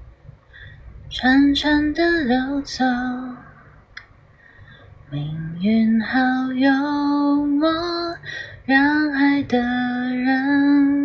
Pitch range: 270-410 Hz